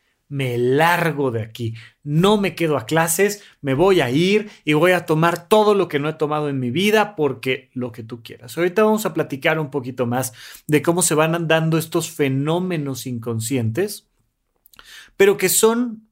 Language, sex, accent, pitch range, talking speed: Spanish, male, Mexican, 125-170 Hz, 180 wpm